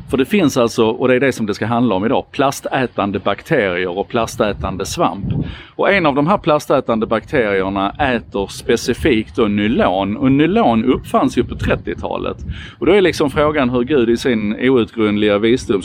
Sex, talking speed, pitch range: male, 175 wpm, 100-125 Hz